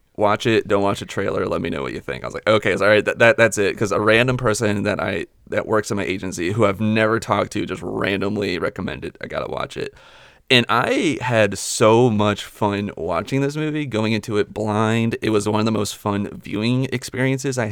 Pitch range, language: 100-115 Hz, English